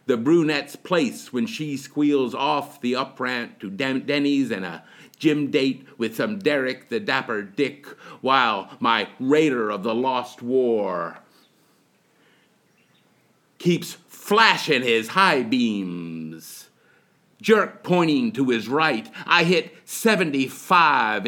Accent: American